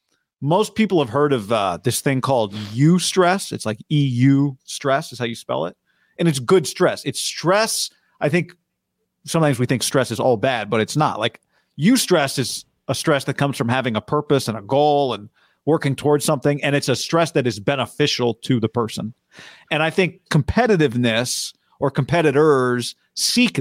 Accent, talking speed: American, 185 wpm